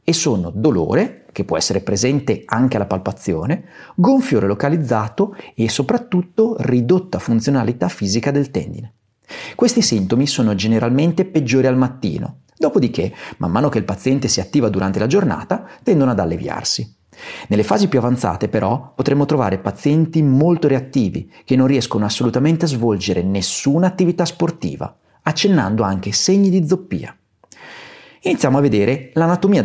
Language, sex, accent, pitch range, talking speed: Italian, male, native, 110-180 Hz, 140 wpm